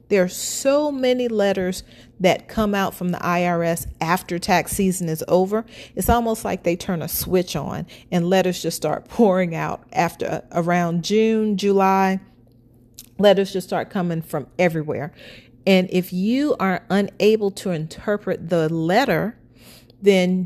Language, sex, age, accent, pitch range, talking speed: English, female, 40-59, American, 165-210 Hz, 145 wpm